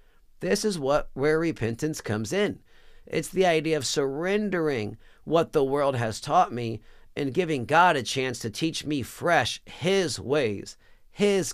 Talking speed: 155 wpm